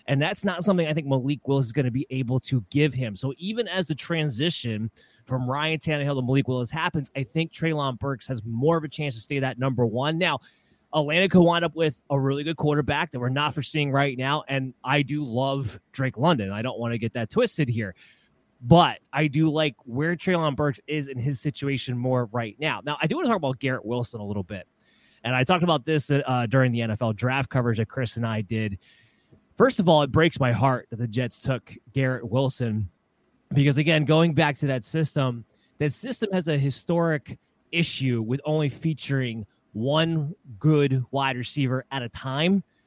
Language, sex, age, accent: English, male, 30-49, American